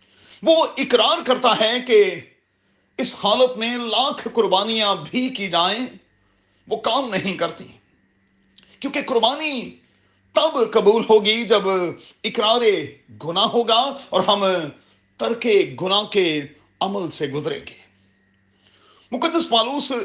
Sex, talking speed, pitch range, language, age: male, 110 wpm, 170-245 Hz, Urdu, 40-59